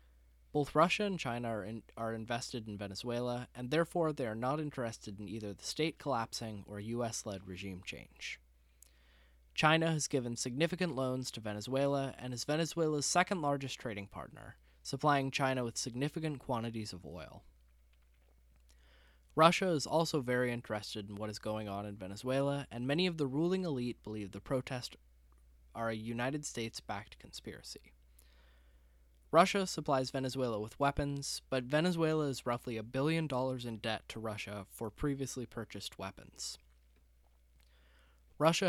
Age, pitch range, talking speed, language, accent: 20-39, 95-140 Hz, 140 wpm, English, American